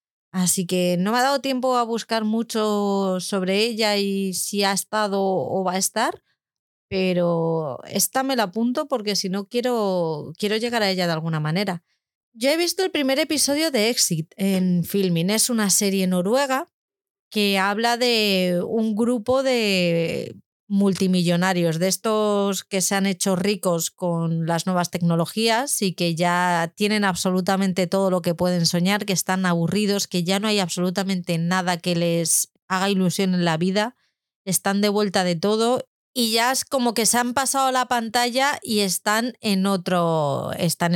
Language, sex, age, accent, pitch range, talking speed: Spanish, female, 30-49, Spanish, 180-235 Hz, 165 wpm